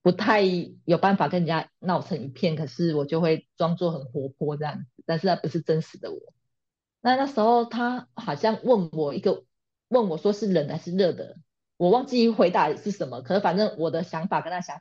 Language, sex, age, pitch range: Chinese, female, 30-49, 160-205 Hz